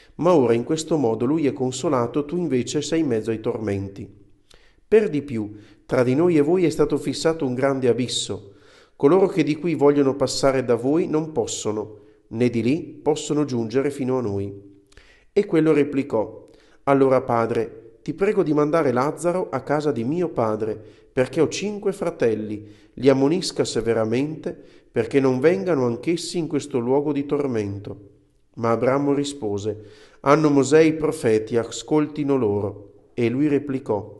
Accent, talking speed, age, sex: native, 160 wpm, 40-59, male